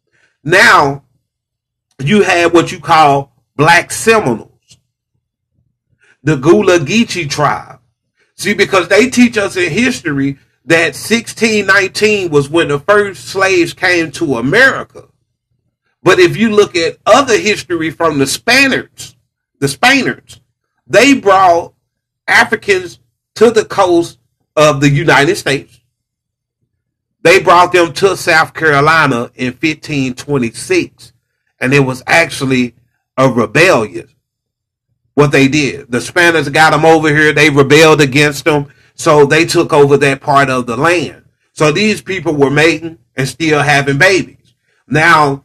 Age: 40-59